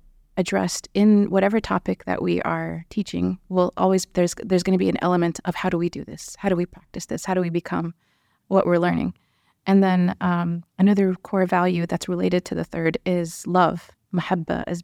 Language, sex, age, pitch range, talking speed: English, female, 30-49, 175-190 Hz, 200 wpm